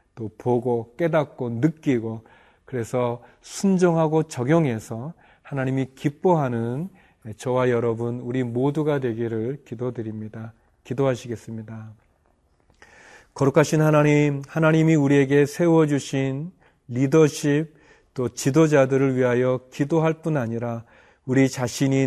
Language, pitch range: Korean, 120-150 Hz